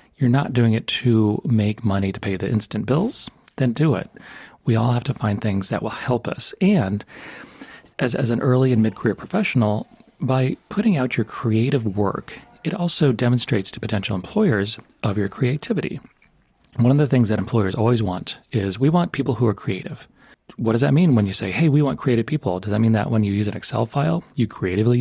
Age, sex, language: 30-49, male, English